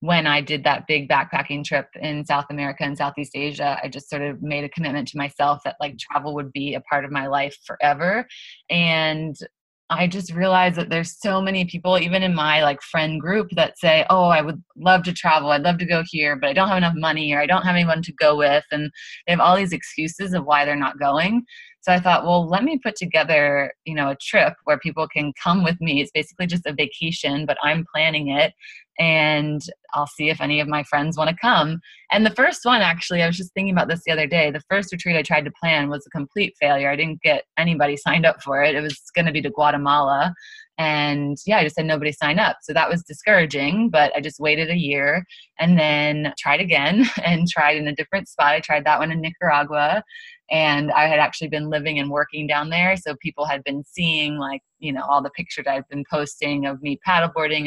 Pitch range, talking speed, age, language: 145-175 Hz, 235 wpm, 20-39, English